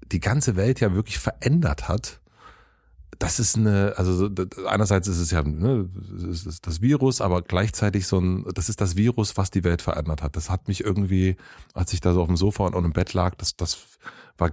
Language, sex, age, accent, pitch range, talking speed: German, male, 30-49, German, 90-110 Hz, 205 wpm